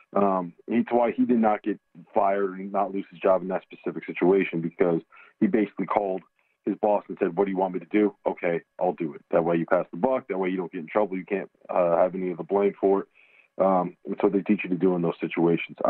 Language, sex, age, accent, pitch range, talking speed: English, male, 40-59, American, 95-130 Hz, 265 wpm